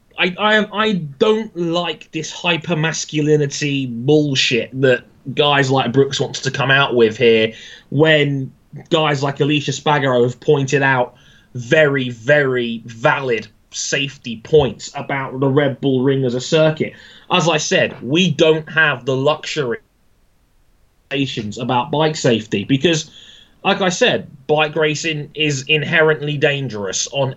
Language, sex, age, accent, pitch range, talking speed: English, male, 20-39, British, 125-150 Hz, 130 wpm